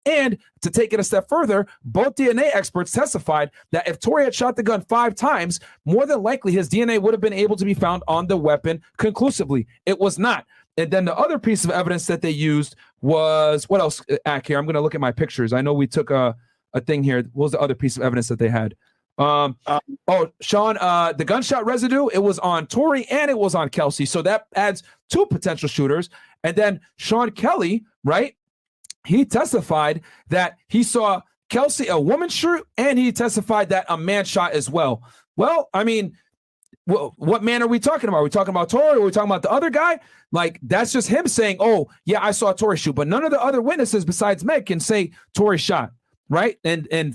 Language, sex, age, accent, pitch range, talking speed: English, male, 40-59, American, 160-235 Hz, 220 wpm